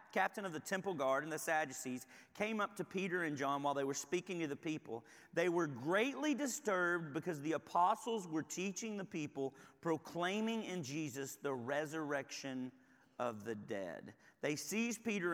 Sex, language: male, English